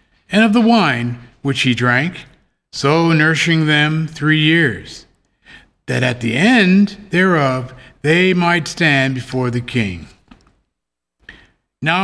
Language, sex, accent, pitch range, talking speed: English, male, American, 125-160 Hz, 120 wpm